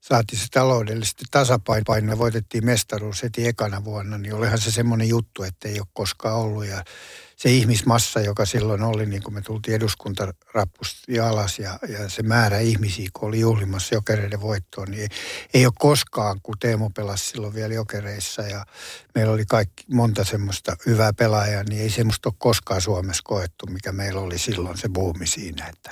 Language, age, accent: Finnish, 60-79, native